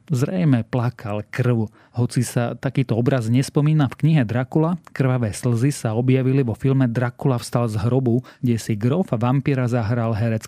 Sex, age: male, 30-49